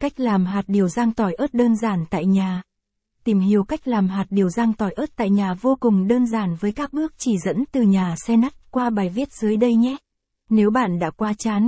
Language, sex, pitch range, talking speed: Vietnamese, female, 200-235 Hz, 235 wpm